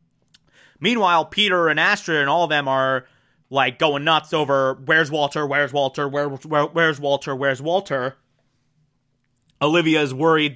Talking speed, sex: 140 wpm, male